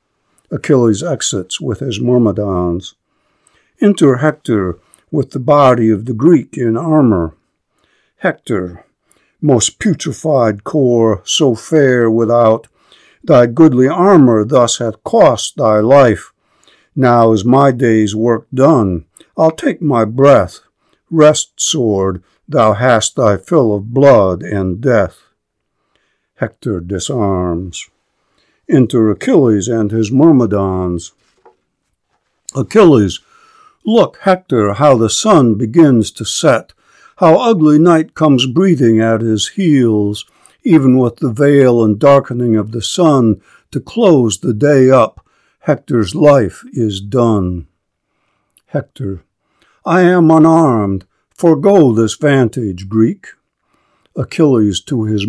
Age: 60-79